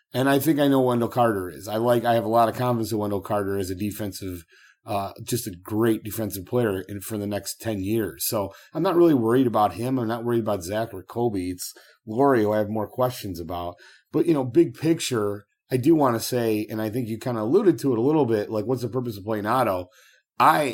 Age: 30-49